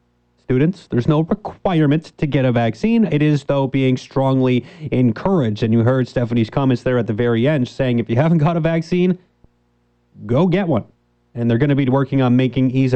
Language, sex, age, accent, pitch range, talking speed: English, male, 30-49, American, 120-150 Hz, 200 wpm